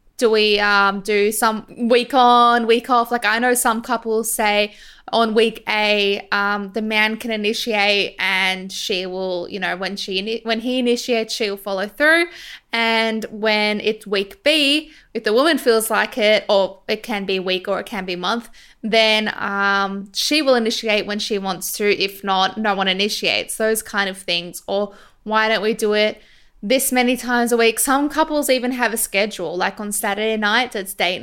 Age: 20-39